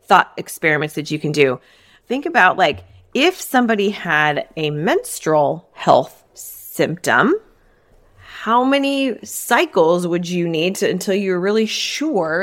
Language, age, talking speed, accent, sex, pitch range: English, 20-39, 125 wpm, American, female, 160-215 Hz